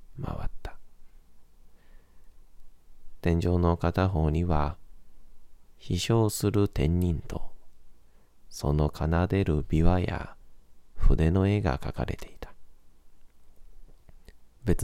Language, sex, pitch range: Japanese, male, 70-90 Hz